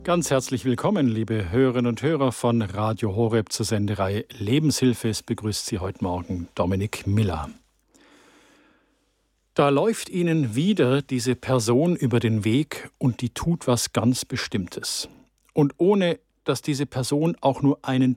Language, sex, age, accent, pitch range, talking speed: German, male, 50-69, German, 115-145 Hz, 140 wpm